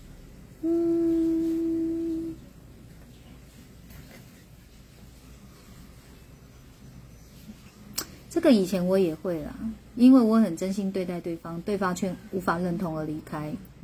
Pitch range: 170-225 Hz